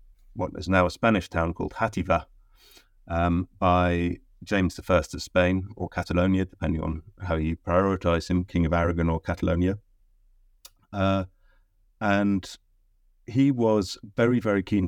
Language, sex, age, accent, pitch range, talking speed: English, male, 30-49, British, 85-100 Hz, 135 wpm